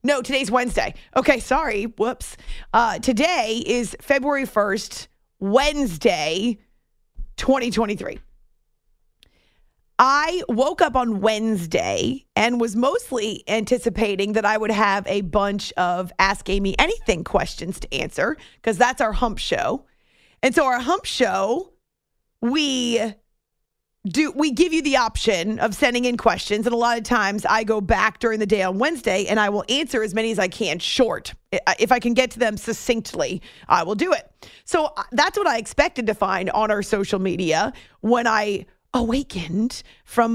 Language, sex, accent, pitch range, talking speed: English, female, American, 210-255 Hz, 155 wpm